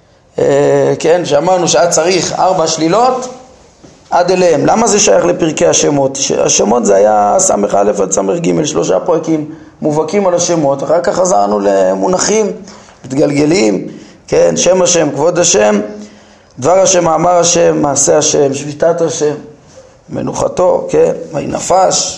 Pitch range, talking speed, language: 145-180 Hz, 130 wpm, Hebrew